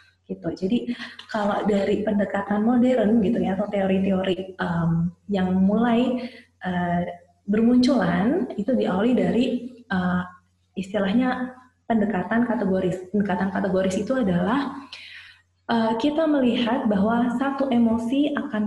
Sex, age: female, 20-39